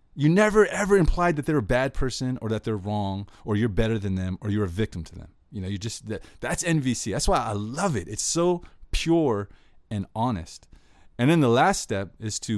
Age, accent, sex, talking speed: 30-49, American, male, 225 wpm